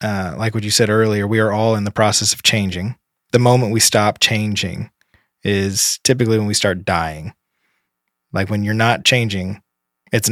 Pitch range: 100-115 Hz